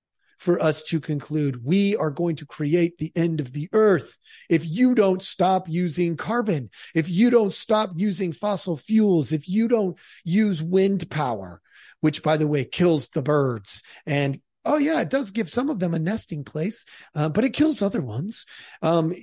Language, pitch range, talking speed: English, 150-200 Hz, 185 wpm